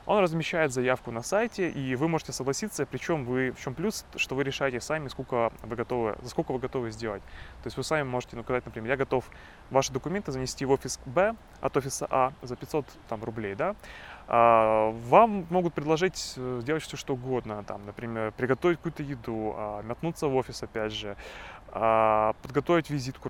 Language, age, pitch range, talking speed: Russian, 20-39, 120-150 Hz, 175 wpm